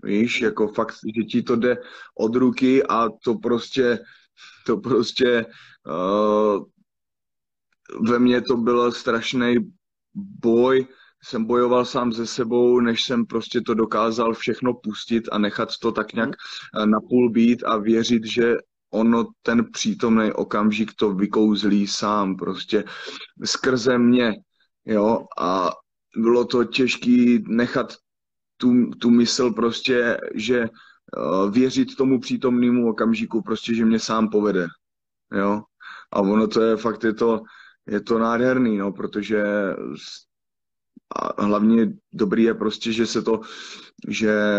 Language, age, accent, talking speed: Czech, 20-39, native, 130 wpm